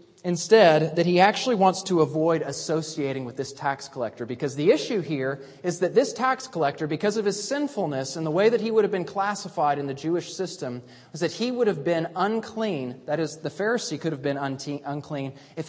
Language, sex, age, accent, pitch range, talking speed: English, male, 30-49, American, 145-215 Hz, 205 wpm